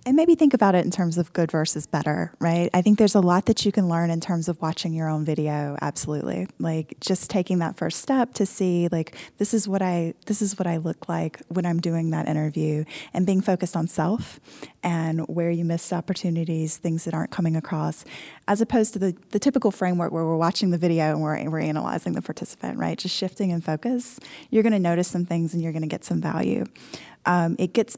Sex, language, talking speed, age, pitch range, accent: female, English, 230 wpm, 10-29, 165-205 Hz, American